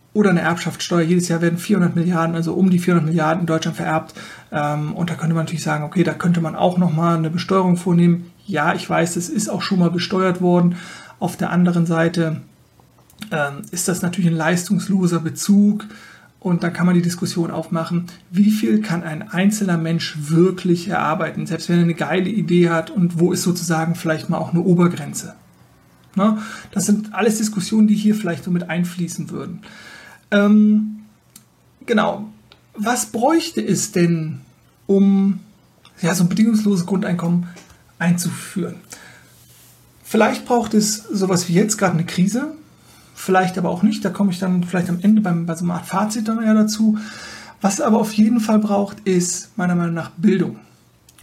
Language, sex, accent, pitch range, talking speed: German, male, German, 170-205 Hz, 170 wpm